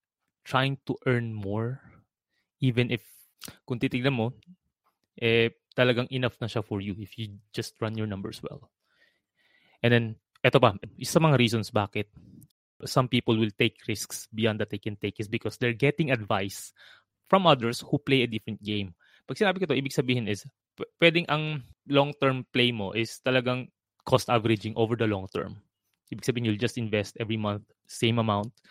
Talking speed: 170 wpm